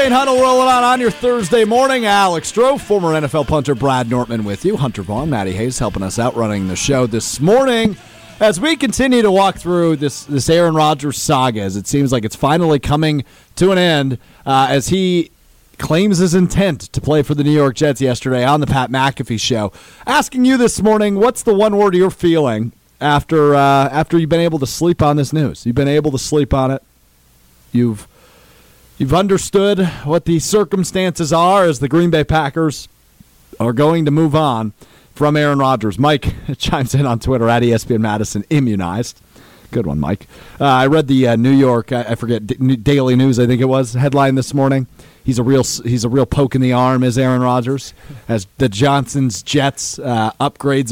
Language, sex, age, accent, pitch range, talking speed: English, male, 40-59, American, 120-160 Hz, 195 wpm